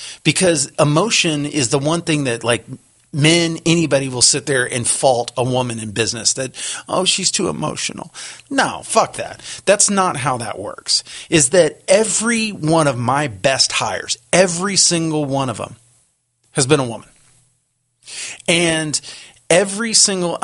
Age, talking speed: 40-59, 155 wpm